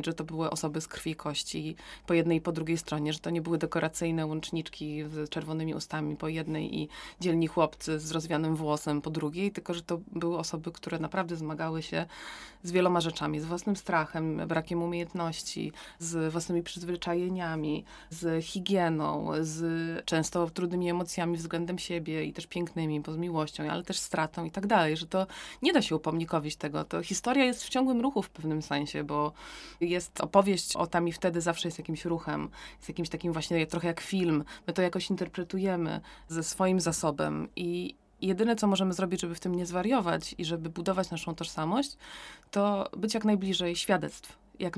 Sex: female